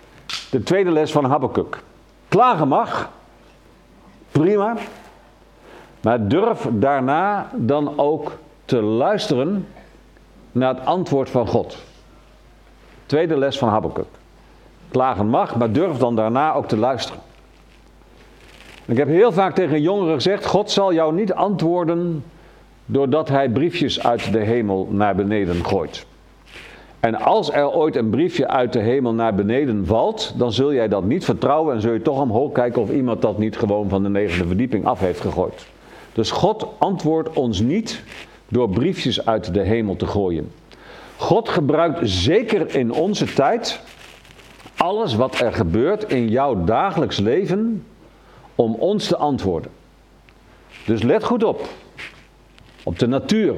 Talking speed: 140 wpm